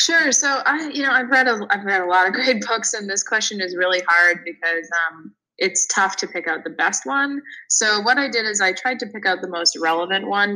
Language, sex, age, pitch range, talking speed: English, female, 20-39, 180-230 Hz, 255 wpm